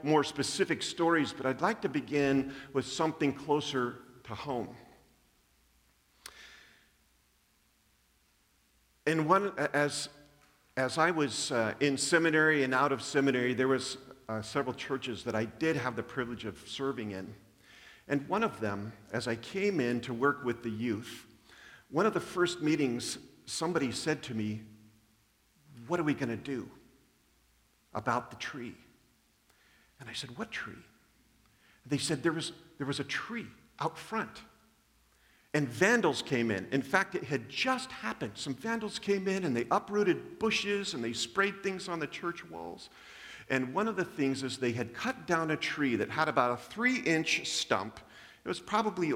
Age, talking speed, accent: 50-69, 165 wpm, American